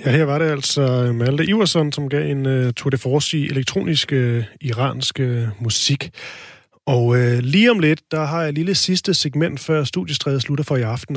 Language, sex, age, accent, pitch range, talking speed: Danish, male, 30-49, native, 125-155 Hz, 200 wpm